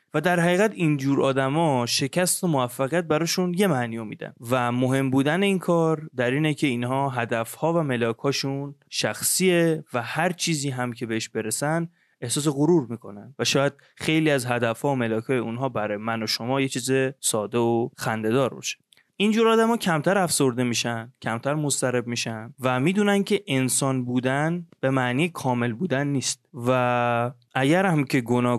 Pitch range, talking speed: 120-160 Hz, 160 wpm